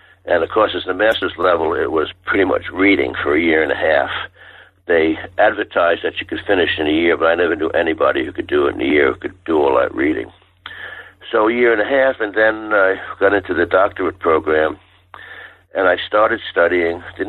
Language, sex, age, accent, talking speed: English, male, 60-79, American, 220 wpm